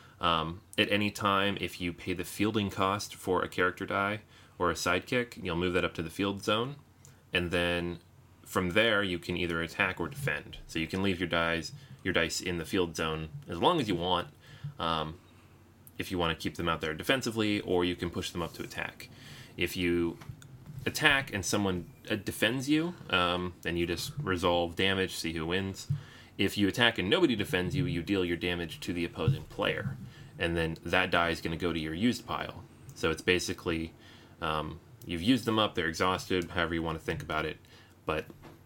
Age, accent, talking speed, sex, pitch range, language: 30-49, American, 200 wpm, male, 85-115 Hz, English